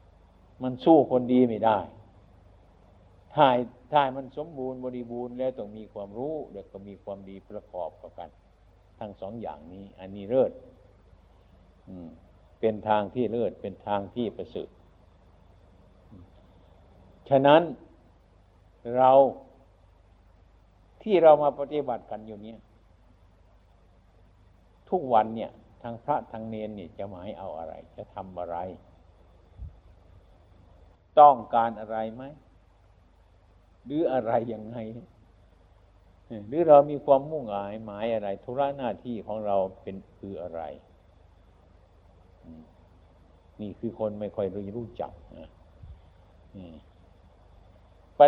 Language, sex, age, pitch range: Thai, male, 60-79, 90-115 Hz